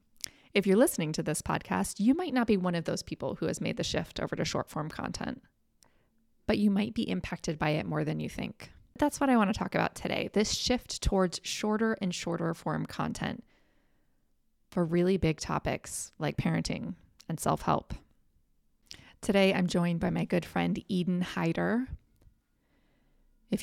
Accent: American